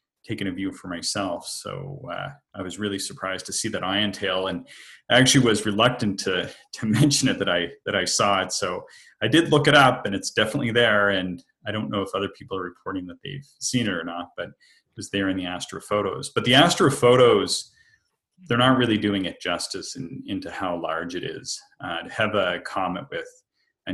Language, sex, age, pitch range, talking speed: English, male, 30-49, 90-130 Hz, 215 wpm